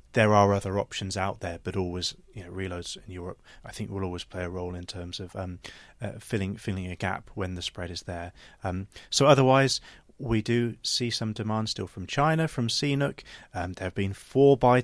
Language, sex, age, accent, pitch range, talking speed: English, male, 30-49, British, 95-115 Hz, 215 wpm